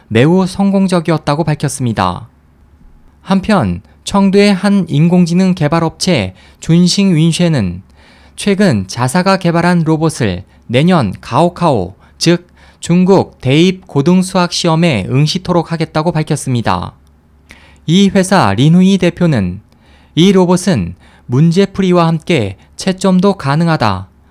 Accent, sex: native, male